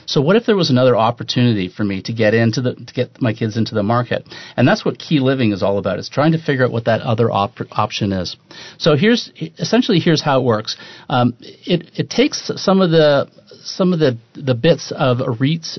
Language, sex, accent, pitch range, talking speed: English, male, American, 115-150 Hz, 230 wpm